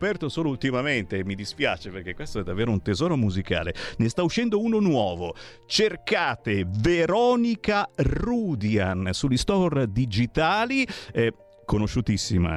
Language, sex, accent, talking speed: Italian, male, native, 120 wpm